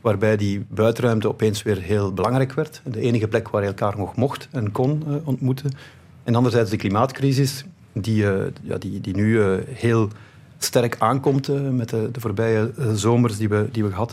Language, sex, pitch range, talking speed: Dutch, male, 105-130 Hz, 190 wpm